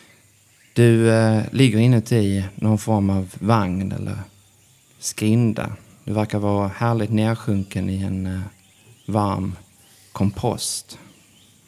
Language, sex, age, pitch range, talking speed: Swedish, male, 30-49, 100-115 Hz, 105 wpm